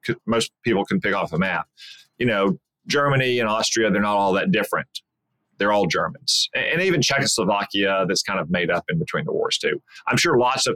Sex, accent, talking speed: male, American, 205 wpm